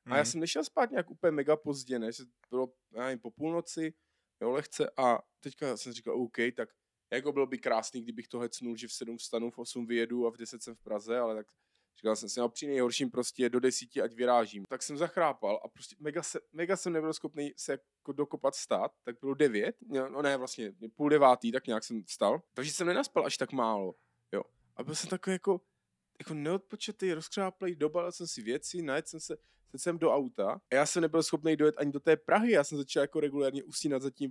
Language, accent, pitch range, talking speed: Czech, native, 125-155 Hz, 220 wpm